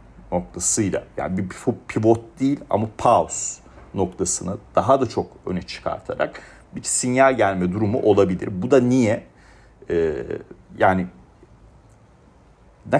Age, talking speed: 40-59, 110 wpm